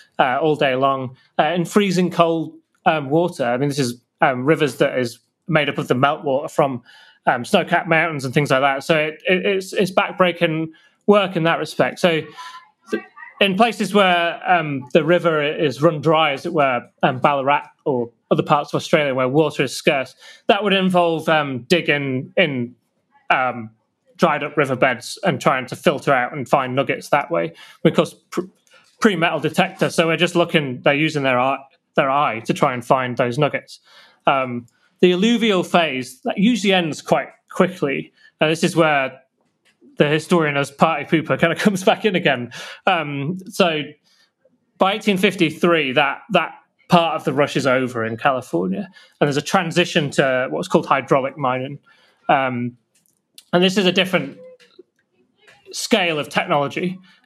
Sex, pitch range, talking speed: male, 140-185 Hz, 170 wpm